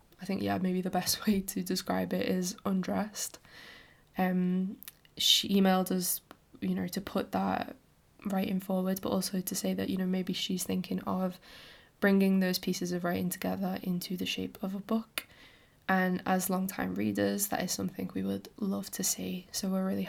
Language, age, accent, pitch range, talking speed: English, 10-29, British, 180-195 Hz, 190 wpm